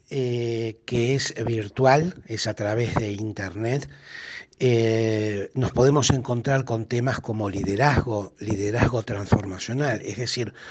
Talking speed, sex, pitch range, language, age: 120 wpm, male, 110-135 Hz, Spanish, 60-79